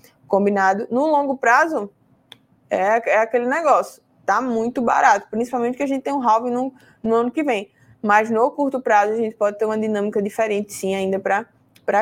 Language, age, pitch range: Portuguese, 20-39, 195-240 Hz